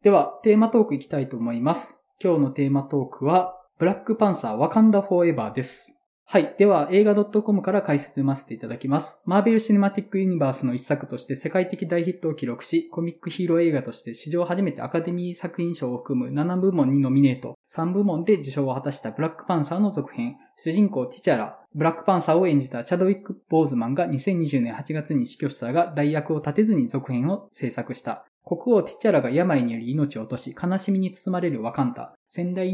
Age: 20-39